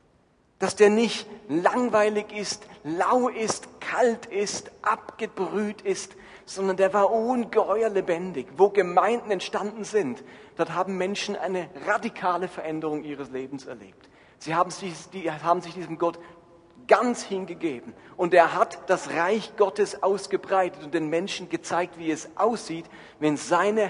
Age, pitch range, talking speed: 40-59, 145-195 Hz, 135 wpm